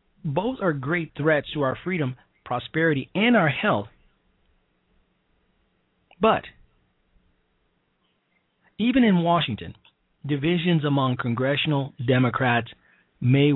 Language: English